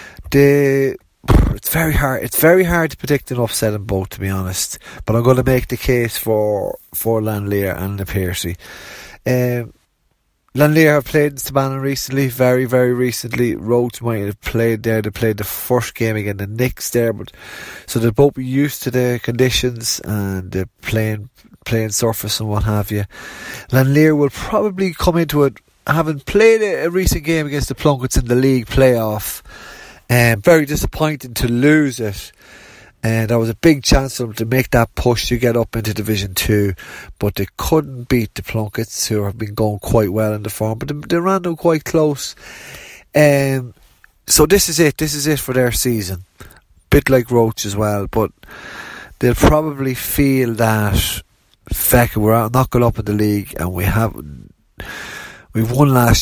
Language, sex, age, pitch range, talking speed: English, male, 30-49, 105-135 Hz, 185 wpm